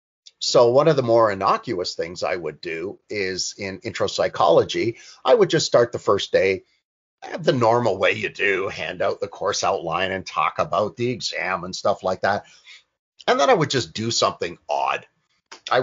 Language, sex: English, male